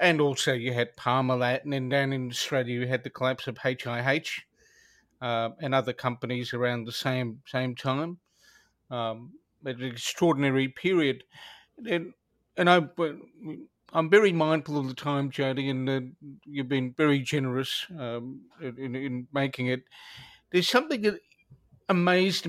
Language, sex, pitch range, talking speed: English, male, 130-165 Hz, 145 wpm